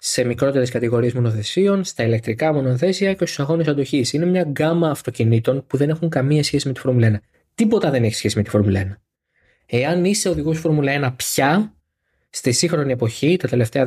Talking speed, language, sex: 185 wpm, Greek, male